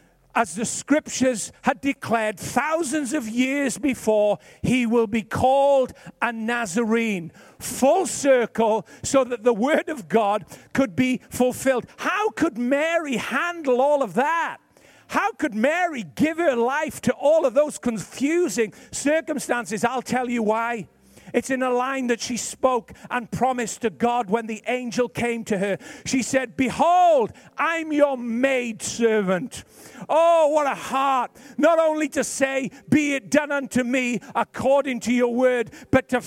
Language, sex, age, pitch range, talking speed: English, male, 50-69, 235-285 Hz, 150 wpm